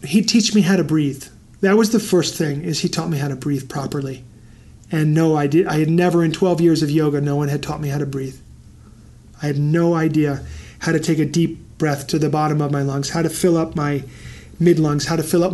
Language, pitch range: English, 145-175 Hz